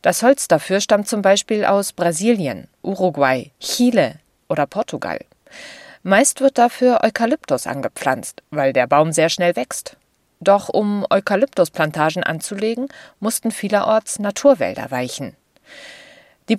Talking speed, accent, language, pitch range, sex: 115 wpm, German, German, 160-230 Hz, female